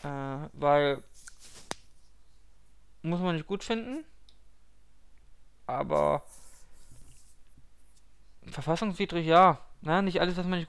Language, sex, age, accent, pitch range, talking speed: German, male, 20-39, German, 140-185 Hz, 90 wpm